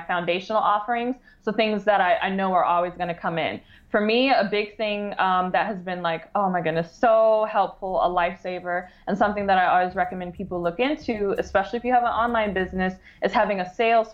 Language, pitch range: English, 180-220 Hz